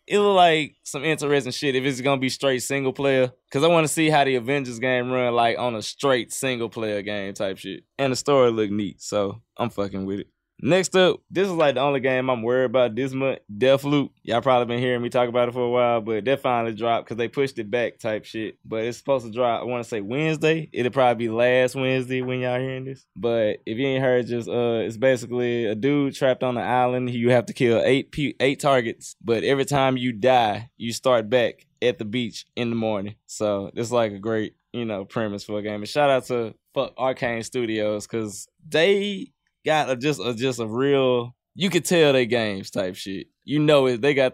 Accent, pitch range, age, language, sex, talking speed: American, 115-140 Hz, 20-39, English, male, 235 wpm